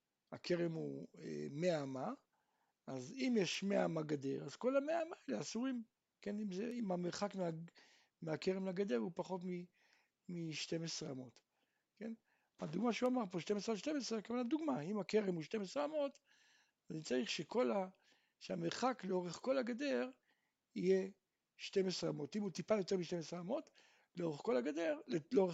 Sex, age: male, 60-79